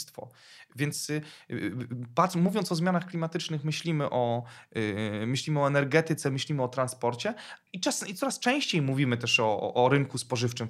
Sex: male